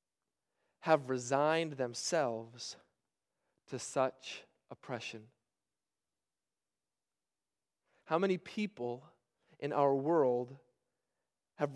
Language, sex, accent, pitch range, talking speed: English, male, American, 125-180 Hz, 65 wpm